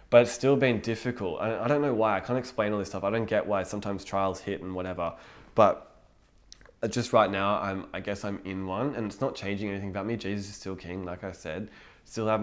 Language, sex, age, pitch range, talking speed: English, male, 20-39, 100-115 Hz, 245 wpm